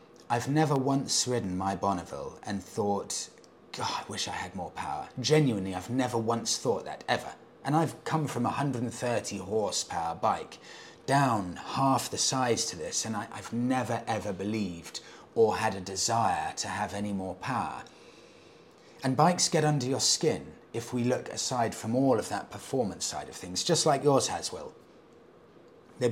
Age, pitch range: 30-49, 105-140 Hz